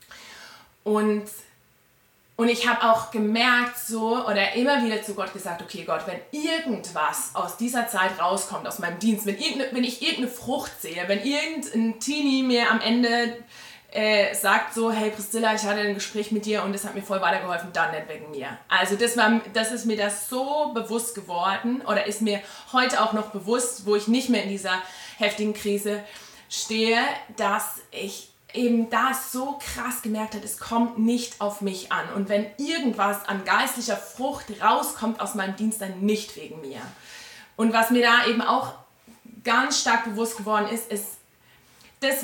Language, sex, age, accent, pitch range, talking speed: German, female, 20-39, German, 205-235 Hz, 175 wpm